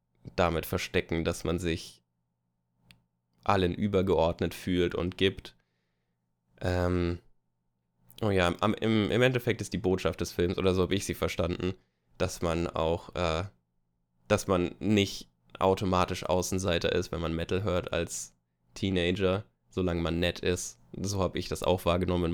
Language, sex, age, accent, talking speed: German, male, 10-29, German, 145 wpm